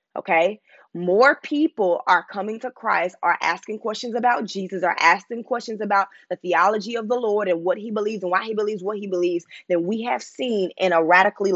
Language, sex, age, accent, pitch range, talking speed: English, female, 20-39, American, 195-250 Hz, 205 wpm